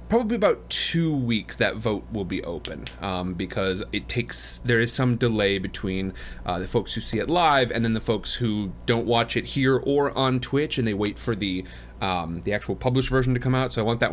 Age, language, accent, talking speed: 30-49, English, American, 230 wpm